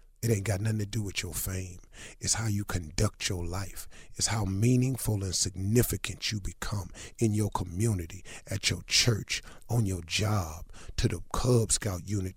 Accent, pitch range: American, 100-115 Hz